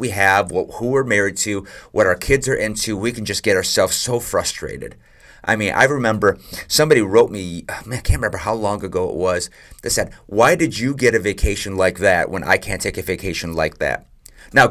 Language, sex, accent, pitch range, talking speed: English, male, American, 100-135 Hz, 210 wpm